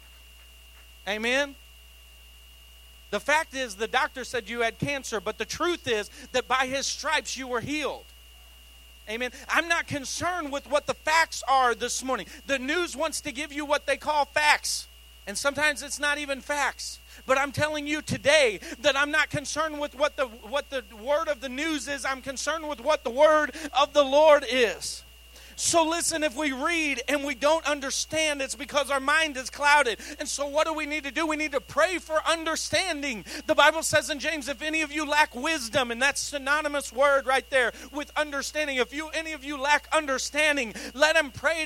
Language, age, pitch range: English, 40-59, 260-310 Hz